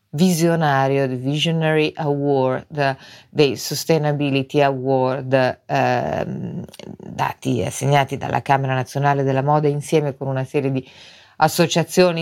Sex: female